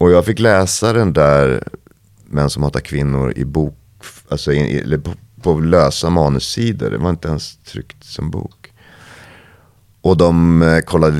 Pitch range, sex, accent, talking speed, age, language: 75-95 Hz, male, Swedish, 160 wpm, 30-49, English